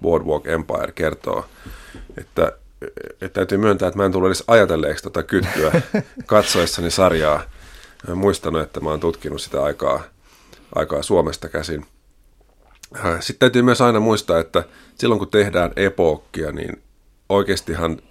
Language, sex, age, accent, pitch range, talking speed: Finnish, male, 30-49, native, 80-95 Hz, 135 wpm